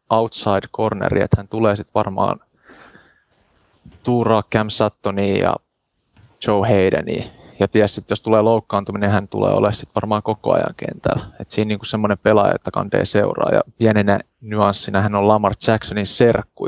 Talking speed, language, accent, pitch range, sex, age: 155 wpm, Finnish, native, 100-115 Hz, male, 20-39